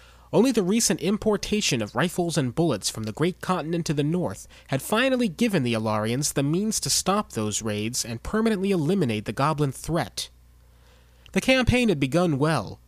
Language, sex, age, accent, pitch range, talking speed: English, male, 30-49, American, 110-170 Hz, 170 wpm